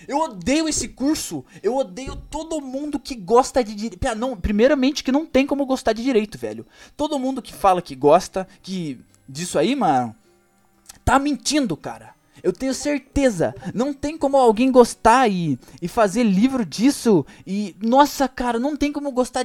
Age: 20-39